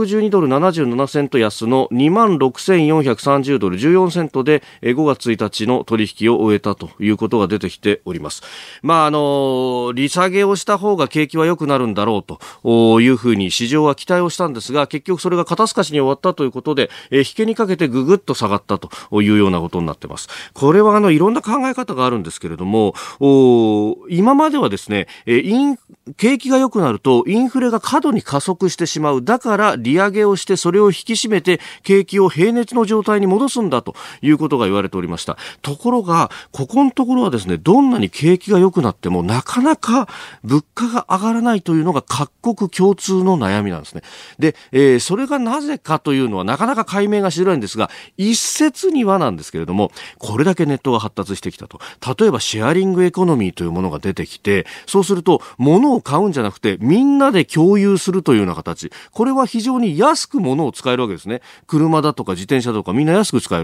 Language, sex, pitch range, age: Japanese, male, 125-210 Hz, 40-59